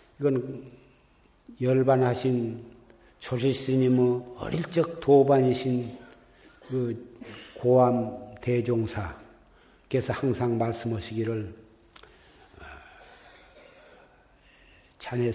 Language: Korean